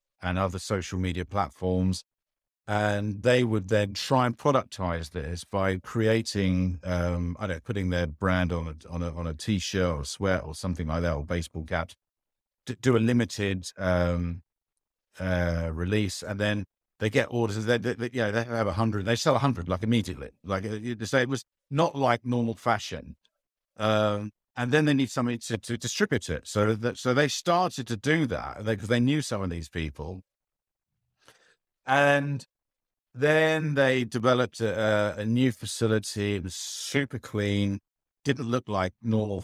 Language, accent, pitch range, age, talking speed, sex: English, British, 90-115 Hz, 50-69, 175 wpm, male